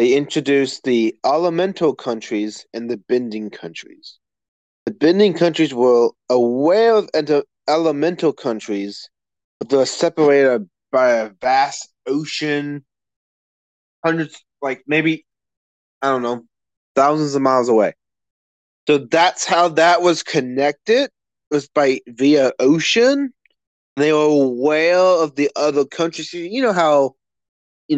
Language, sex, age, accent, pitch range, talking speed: English, male, 30-49, American, 120-160 Hz, 120 wpm